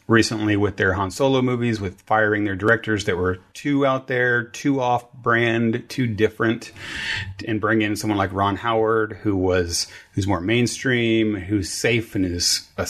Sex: male